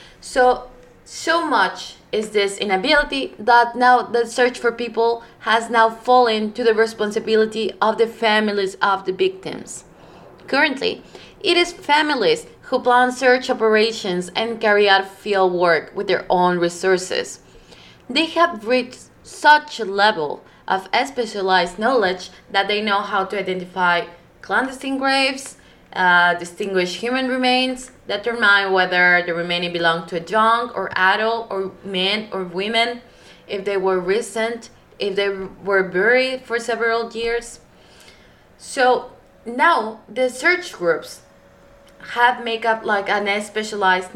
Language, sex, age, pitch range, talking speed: English, female, 20-39, 195-245 Hz, 135 wpm